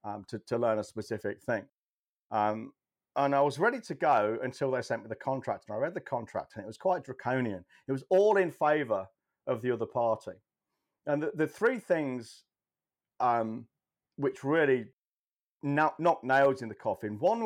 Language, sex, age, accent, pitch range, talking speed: English, male, 40-59, British, 115-155 Hz, 180 wpm